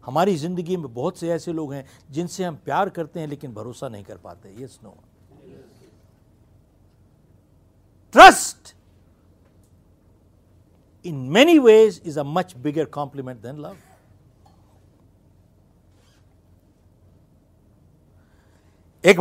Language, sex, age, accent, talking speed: Hindi, male, 60-79, native, 100 wpm